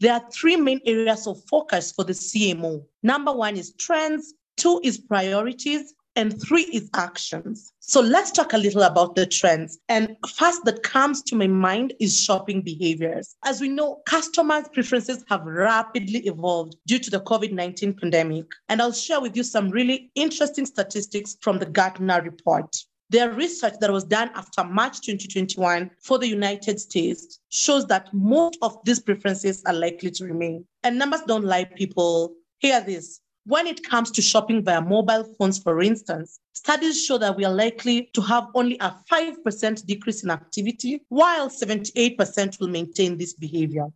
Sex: female